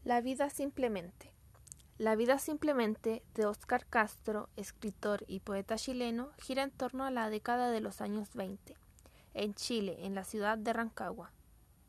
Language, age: Spanish, 20-39